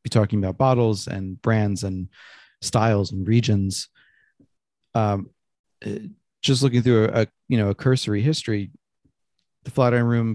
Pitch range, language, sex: 100-115 Hz, English, male